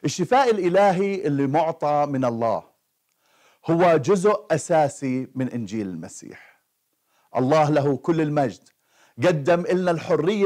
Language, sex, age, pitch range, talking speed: Arabic, male, 50-69, 125-175 Hz, 110 wpm